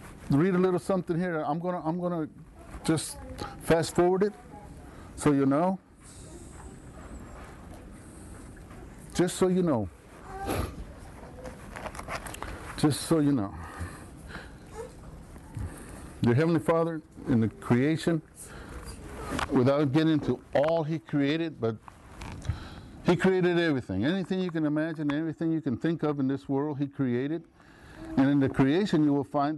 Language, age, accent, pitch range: English, 60-79, American, 125-165 Hz